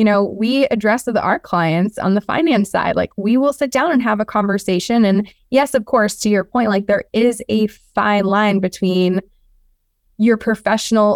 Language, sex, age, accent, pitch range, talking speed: English, female, 20-39, American, 190-225 Hz, 195 wpm